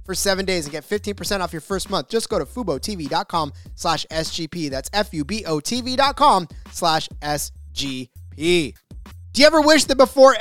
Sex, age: male, 20-39